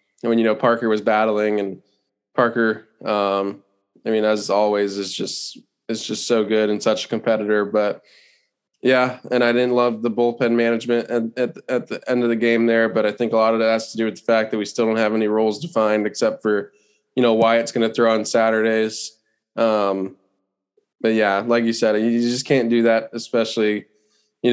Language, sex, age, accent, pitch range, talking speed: English, male, 20-39, American, 110-120 Hz, 215 wpm